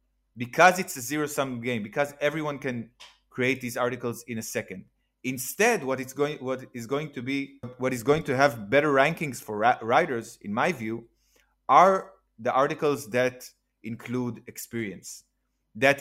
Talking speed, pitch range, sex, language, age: 160 wpm, 125-150 Hz, male, English, 30-49